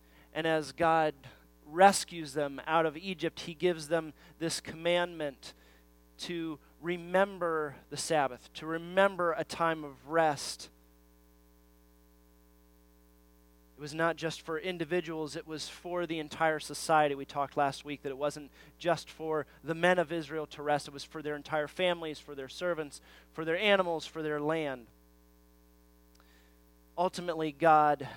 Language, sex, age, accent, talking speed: English, male, 30-49, American, 145 wpm